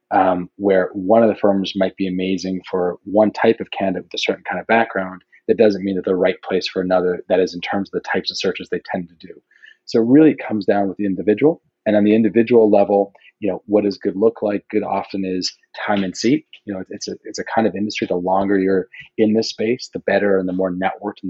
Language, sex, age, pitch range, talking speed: English, male, 30-49, 95-110 Hz, 260 wpm